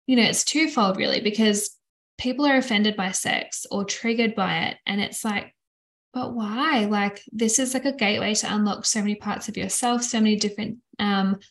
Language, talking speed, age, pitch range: English, 195 wpm, 10-29, 205-245 Hz